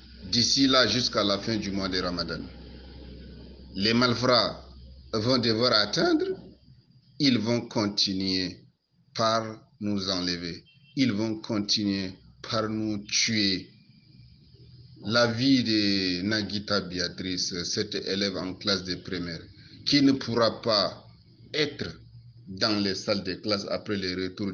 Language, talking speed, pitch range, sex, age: French, 120 wpm, 90-110 Hz, male, 50-69